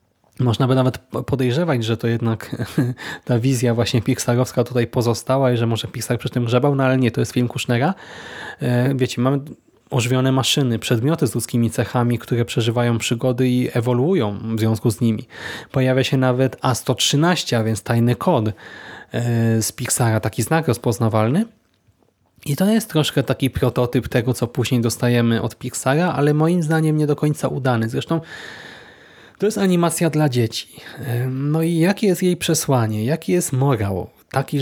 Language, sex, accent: Polish, male, native